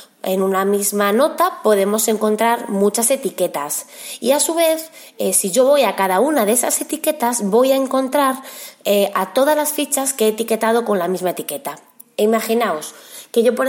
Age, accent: 20-39, Spanish